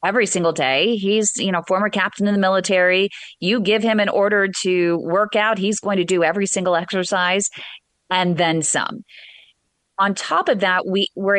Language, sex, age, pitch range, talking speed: English, female, 30-49, 160-195 Hz, 185 wpm